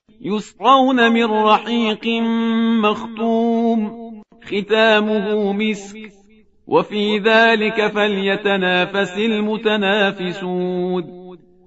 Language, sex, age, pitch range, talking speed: Persian, male, 40-59, 195-225 Hz, 50 wpm